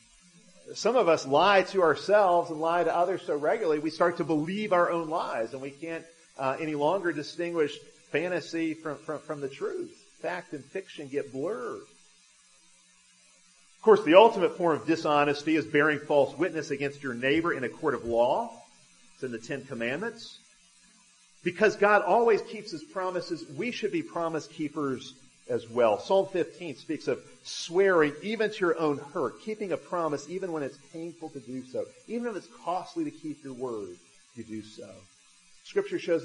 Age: 40-59